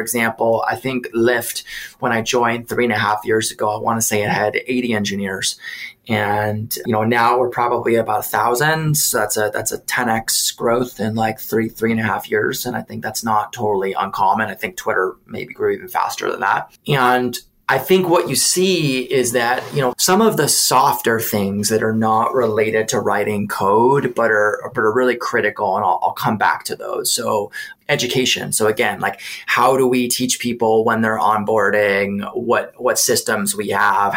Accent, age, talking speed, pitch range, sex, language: American, 20-39, 200 wpm, 105-125 Hz, male, English